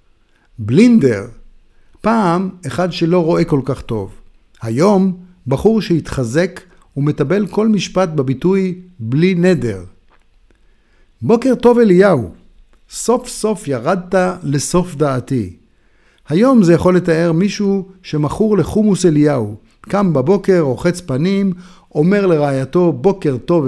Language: Hebrew